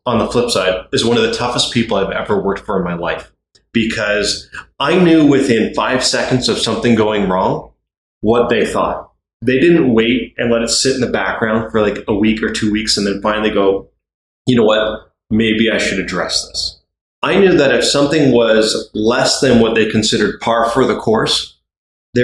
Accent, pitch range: American, 110-130 Hz